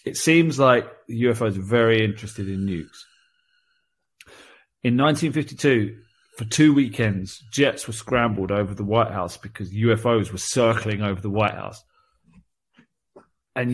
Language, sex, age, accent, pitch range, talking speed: English, male, 30-49, British, 105-130 Hz, 130 wpm